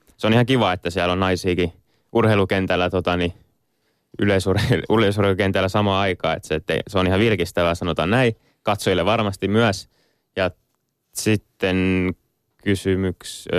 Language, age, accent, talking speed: Finnish, 20-39, native, 120 wpm